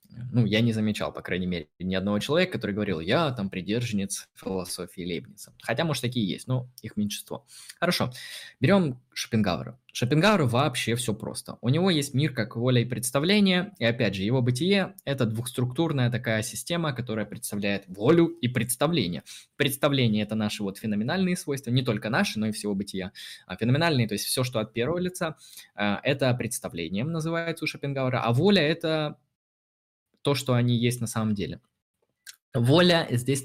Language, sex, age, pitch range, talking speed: Russian, male, 20-39, 105-140 Hz, 170 wpm